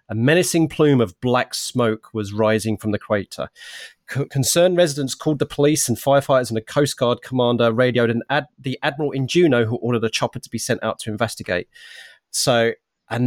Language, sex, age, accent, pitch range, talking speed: English, male, 30-49, British, 110-145 Hz, 195 wpm